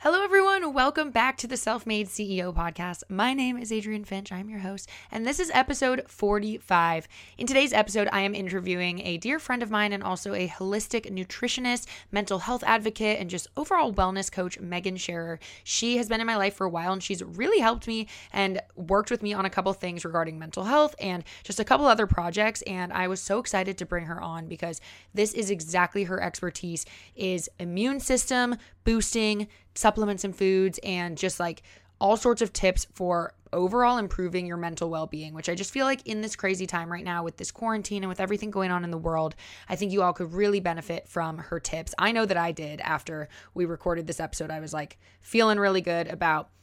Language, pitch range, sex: English, 170-220 Hz, female